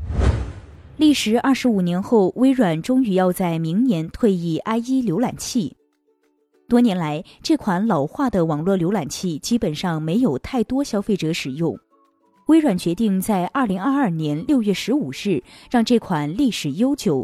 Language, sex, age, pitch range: Chinese, female, 20-39, 160-250 Hz